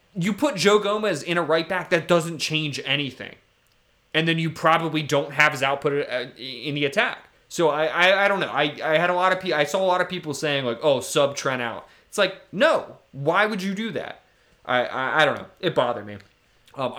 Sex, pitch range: male, 120-155 Hz